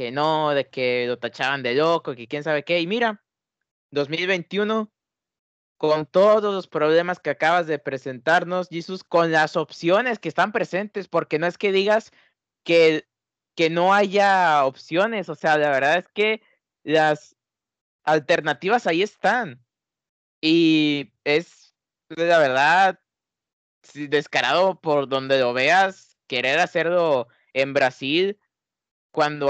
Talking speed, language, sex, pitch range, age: 130 wpm, Spanish, male, 140-185 Hz, 20-39